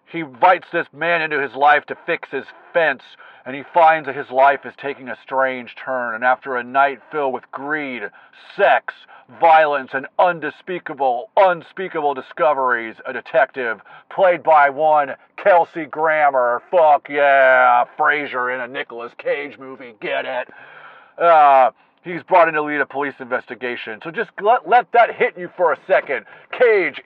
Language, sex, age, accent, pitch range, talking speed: English, male, 40-59, American, 140-180 Hz, 160 wpm